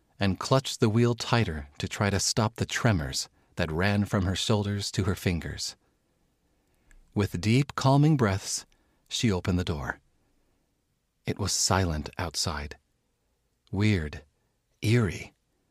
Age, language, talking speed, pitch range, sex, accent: 40-59, English, 125 wpm, 90-115 Hz, male, American